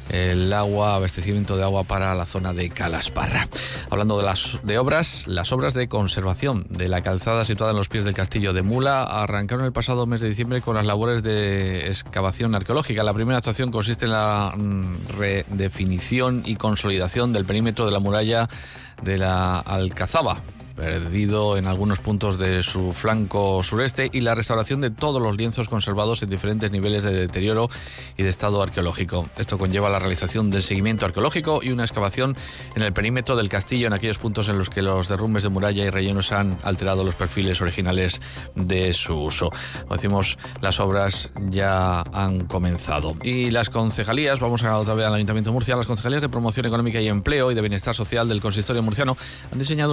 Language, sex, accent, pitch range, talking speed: Spanish, male, Spanish, 95-115 Hz, 180 wpm